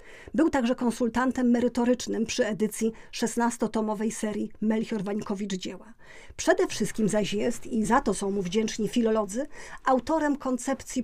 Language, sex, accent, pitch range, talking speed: Polish, female, native, 220-260 Hz, 130 wpm